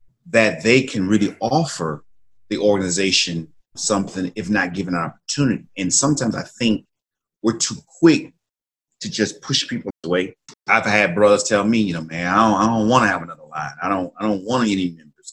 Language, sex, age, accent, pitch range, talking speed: English, male, 30-49, American, 90-110 Hz, 190 wpm